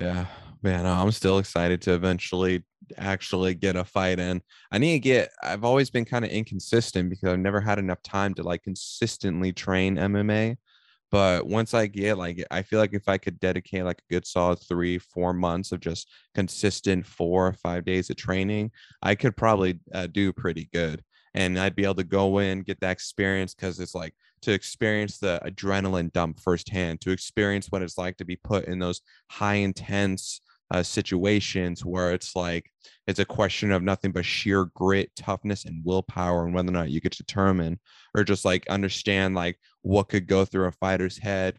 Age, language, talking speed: 20-39, English, 195 wpm